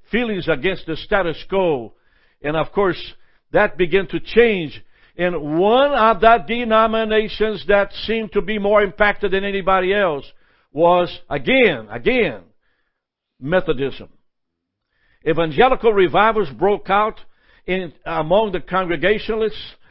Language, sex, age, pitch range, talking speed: English, male, 60-79, 165-215 Hz, 115 wpm